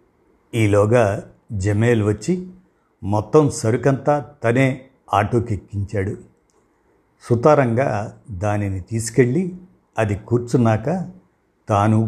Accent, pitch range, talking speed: native, 105-130 Hz, 70 wpm